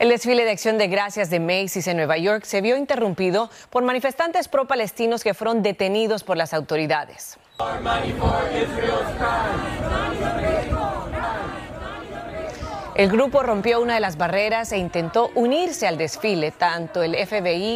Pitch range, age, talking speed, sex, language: 175-230 Hz, 30-49, 130 wpm, female, Spanish